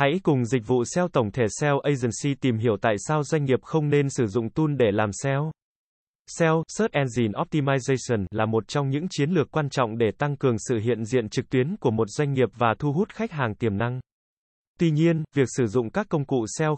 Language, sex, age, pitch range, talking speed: Vietnamese, male, 20-39, 120-160 Hz, 225 wpm